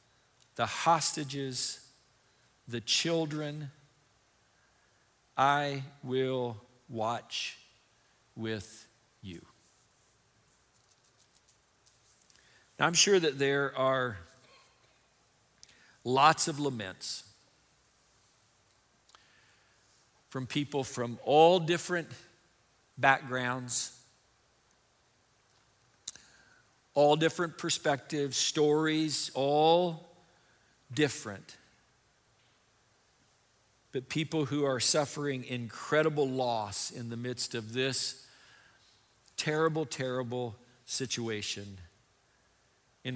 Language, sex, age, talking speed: English, male, 50-69, 65 wpm